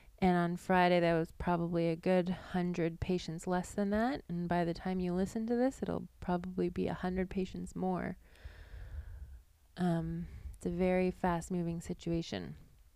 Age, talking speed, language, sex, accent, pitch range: 20-39, 155 wpm, English, female, American, 170-195 Hz